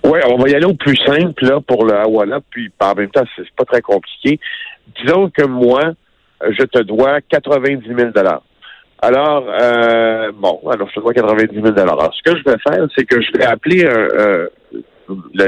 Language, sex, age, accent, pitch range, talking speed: French, male, 60-79, French, 120-180 Hz, 205 wpm